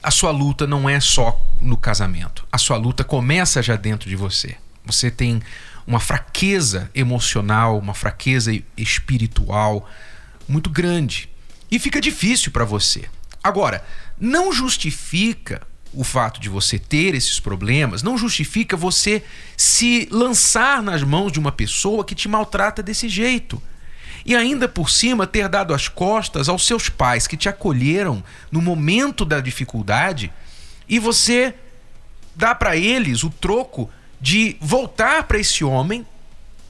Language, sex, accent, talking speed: Portuguese, male, Brazilian, 140 wpm